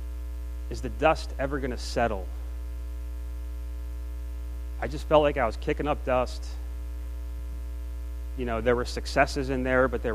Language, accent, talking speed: English, American, 150 wpm